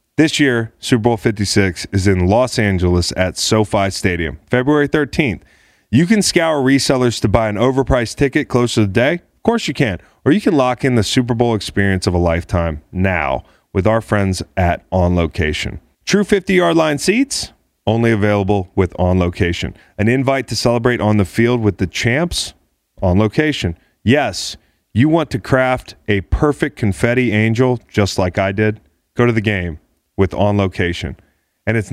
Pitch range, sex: 95-125 Hz, male